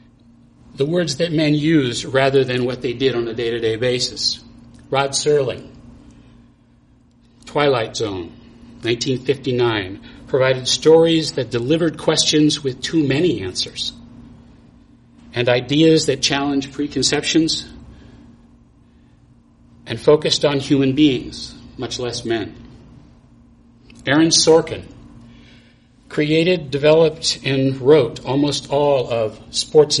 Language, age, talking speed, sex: English, 60-79, 100 wpm, male